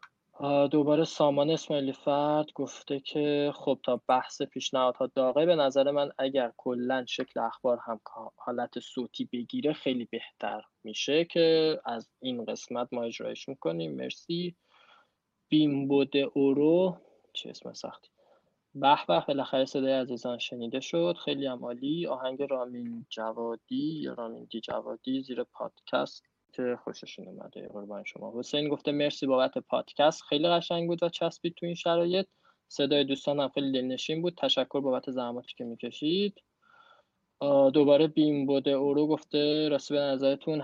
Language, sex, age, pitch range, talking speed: Persian, male, 20-39, 125-160 Hz, 135 wpm